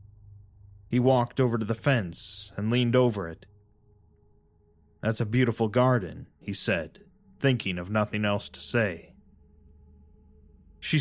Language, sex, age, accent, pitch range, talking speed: English, male, 30-49, American, 90-125 Hz, 125 wpm